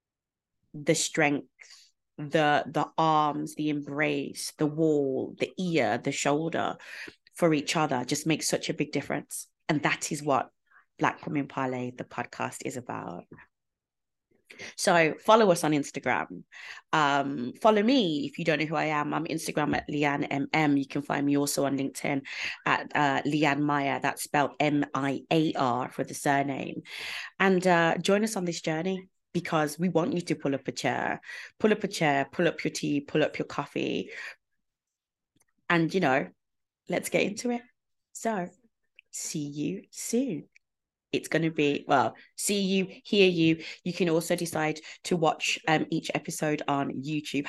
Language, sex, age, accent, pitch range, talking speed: English, female, 30-49, British, 145-175 Hz, 165 wpm